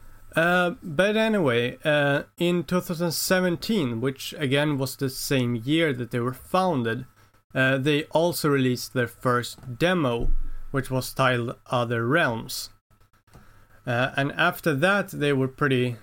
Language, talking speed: English, 130 wpm